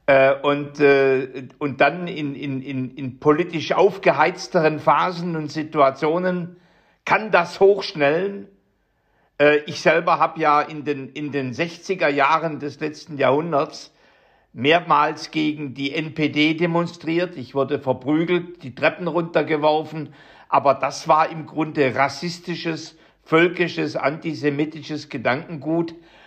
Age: 60-79